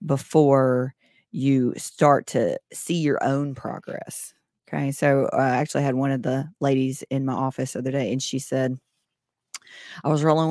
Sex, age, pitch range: female, 30-49, 135-155 Hz